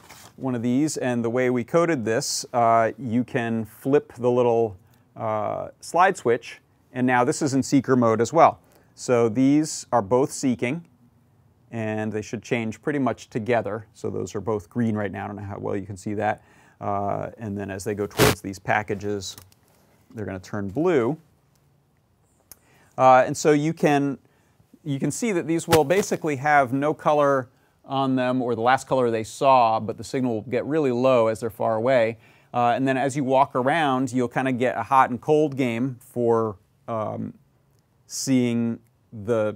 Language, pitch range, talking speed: English, 110-135 Hz, 185 wpm